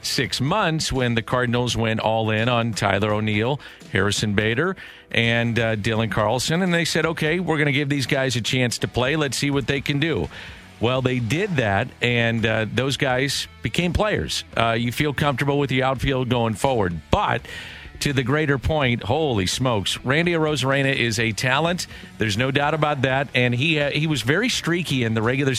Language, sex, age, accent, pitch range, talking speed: English, male, 50-69, American, 110-140 Hz, 195 wpm